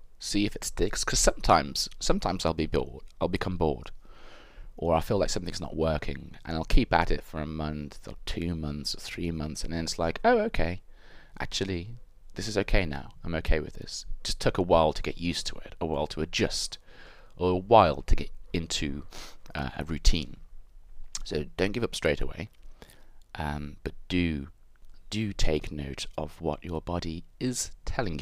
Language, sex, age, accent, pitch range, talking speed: English, male, 30-49, British, 80-95 Hz, 190 wpm